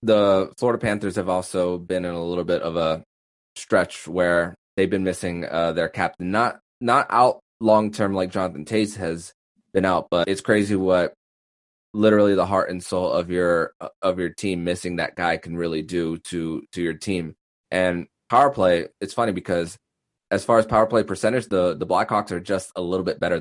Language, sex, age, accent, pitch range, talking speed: English, male, 20-39, American, 85-100 Hz, 195 wpm